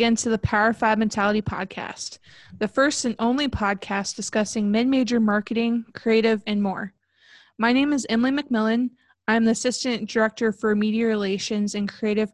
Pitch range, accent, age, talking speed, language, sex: 210-245 Hz, American, 20-39, 150 wpm, English, female